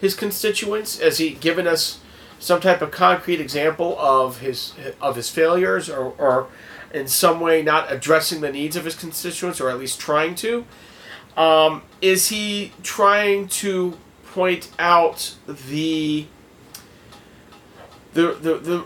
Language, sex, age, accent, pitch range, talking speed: English, male, 30-49, American, 140-180 Hz, 140 wpm